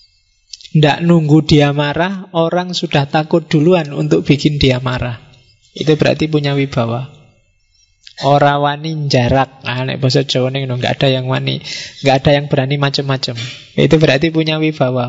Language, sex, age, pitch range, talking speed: Indonesian, male, 20-39, 130-155 Hz, 125 wpm